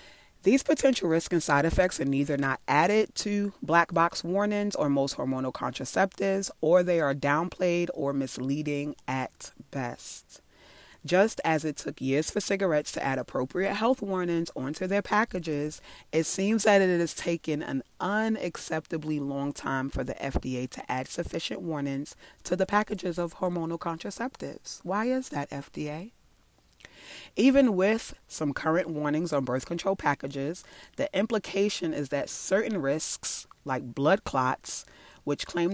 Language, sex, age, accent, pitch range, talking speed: English, female, 30-49, American, 140-190 Hz, 150 wpm